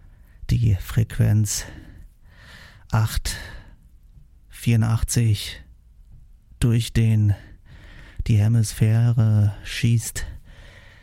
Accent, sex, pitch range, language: German, male, 95-110 Hz, German